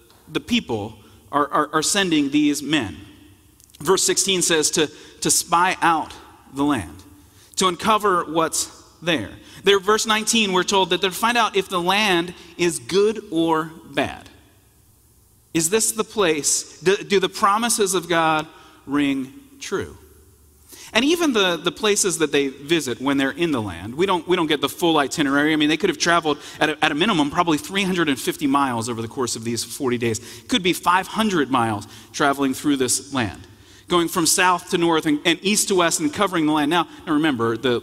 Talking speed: 190 wpm